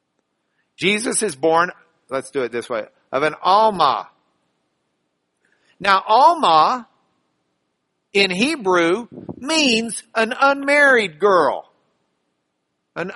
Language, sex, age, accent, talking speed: English, male, 50-69, American, 90 wpm